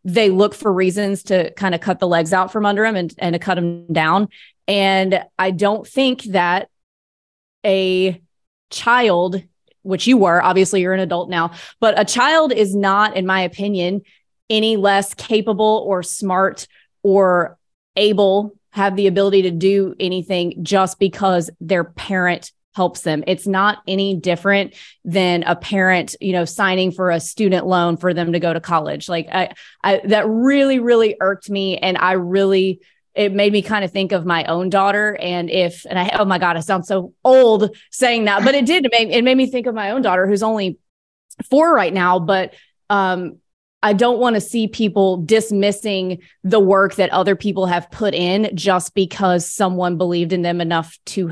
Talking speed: 185 wpm